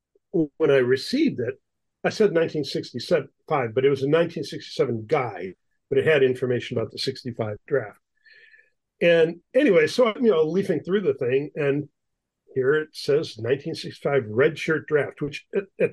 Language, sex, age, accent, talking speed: English, male, 50-69, American, 145 wpm